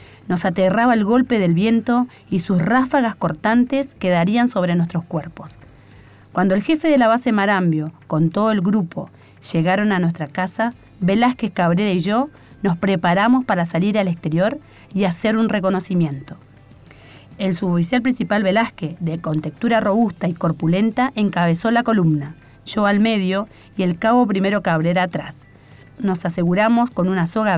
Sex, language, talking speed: female, Spanish, 150 wpm